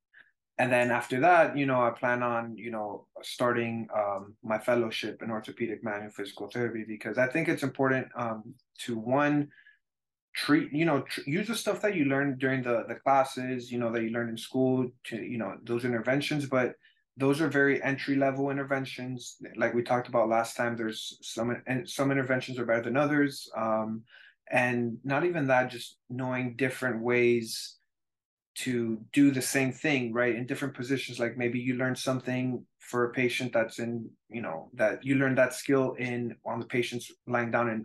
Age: 20-39